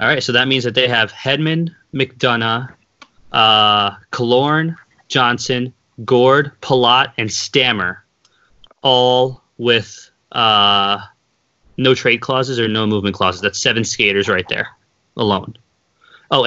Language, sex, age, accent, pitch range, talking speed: English, male, 20-39, American, 105-125 Hz, 115 wpm